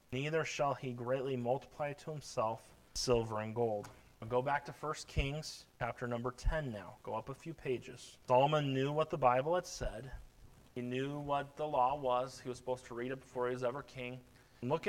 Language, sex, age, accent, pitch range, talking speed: English, male, 30-49, American, 125-165 Hz, 200 wpm